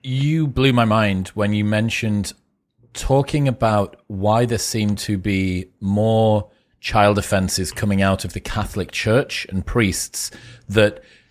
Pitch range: 100-115 Hz